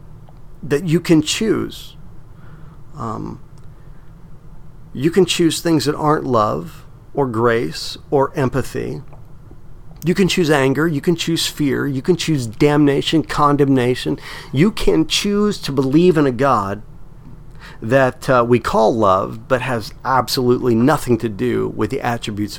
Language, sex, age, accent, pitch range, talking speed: English, male, 50-69, American, 120-150 Hz, 135 wpm